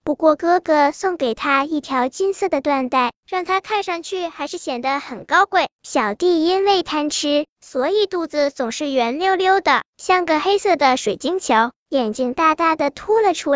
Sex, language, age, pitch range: male, Chinese, 10-29, 275-365 Hz